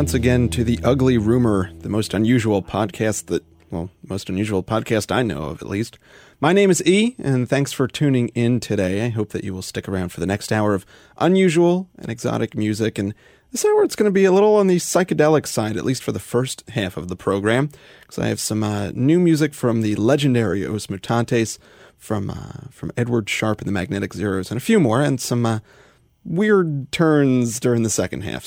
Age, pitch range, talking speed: 30-49, 105-140 Hz, 215 wpm